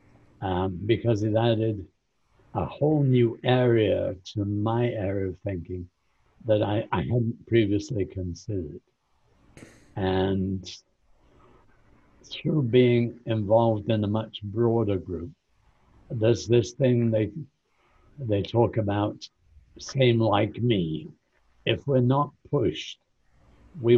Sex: male